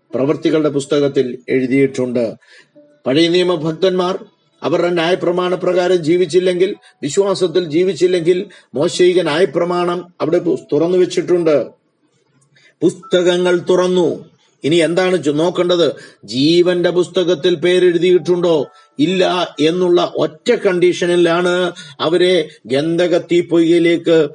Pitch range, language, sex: 165-185 Hz, Malayalam, male